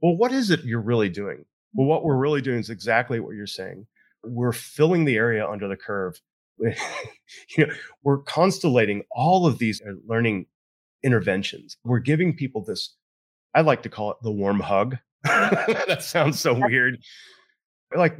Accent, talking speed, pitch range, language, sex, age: American, 160 wpm, 110-145 Hz, English, male, 30-49